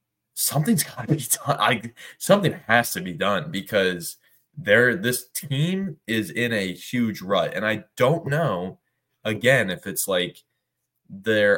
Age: 20-39